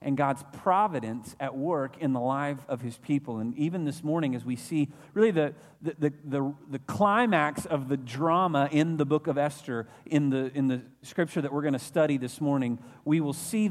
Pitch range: 130-160 Hz